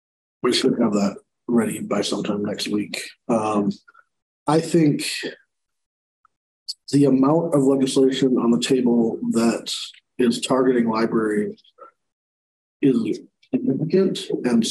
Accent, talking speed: American, 105 wpm